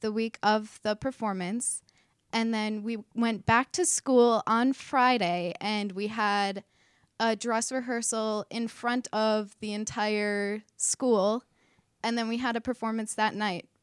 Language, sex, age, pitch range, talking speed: English, female, 10-29, 200-230 Hz, 150 wpm